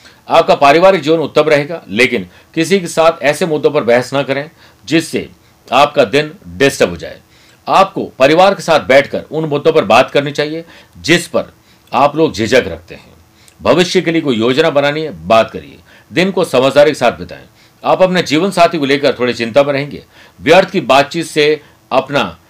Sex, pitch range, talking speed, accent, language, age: male, 120-165 Hz, 185 wpm, native, Hindi, 50-69